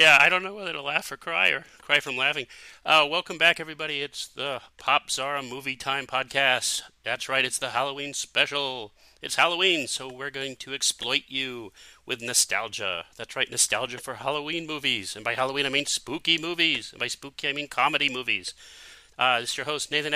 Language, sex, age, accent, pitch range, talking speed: English, male, 40-59, American, 130-155 Hz, 195 wpm